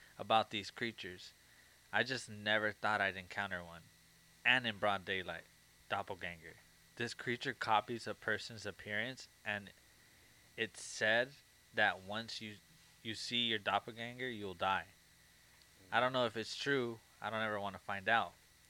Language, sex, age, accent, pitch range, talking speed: English, male, 20-39, American, 100-115 Hz, 150 wpm